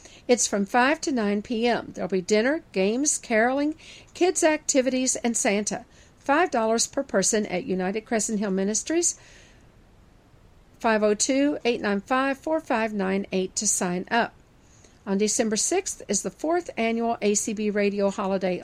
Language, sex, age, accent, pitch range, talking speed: English, female, 50-69, American, 200-260 Hz, 120 wpm